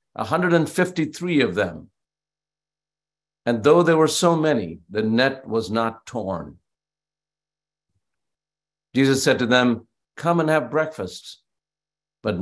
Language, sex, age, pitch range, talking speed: English, male, 60-79, 105-155 Hz, 110 wpm